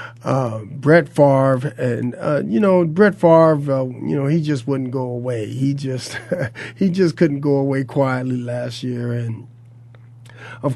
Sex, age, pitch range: male, 40-59, 120-145 Hz